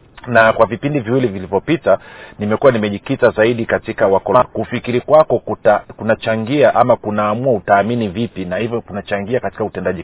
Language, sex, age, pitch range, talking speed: Swahili, male, 40-59, 100-125 Hz, 130 wpm